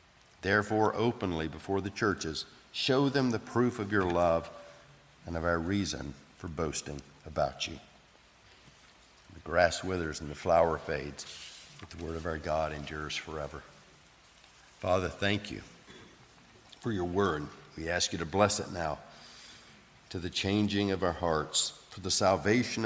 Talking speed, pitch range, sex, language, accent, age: 150 wpm, 80-105 Hz, male, English, American, 50-69